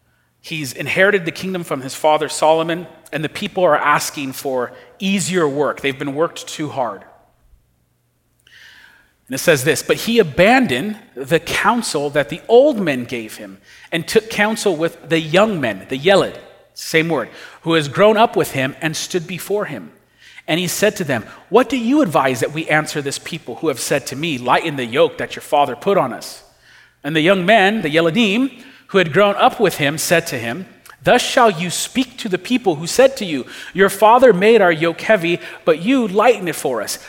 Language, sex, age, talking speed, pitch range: English, male, 40-59, 200 wpm, 155-215 Hz